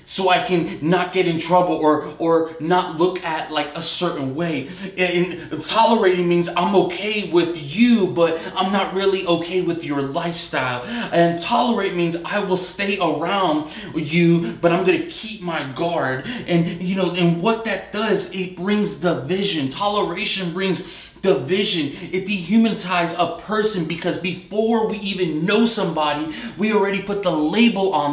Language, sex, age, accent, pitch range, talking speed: English, male, 20-39, American, 160-200 Hz, 160 wpm